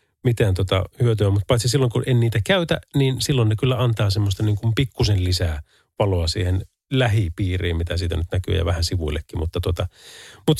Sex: male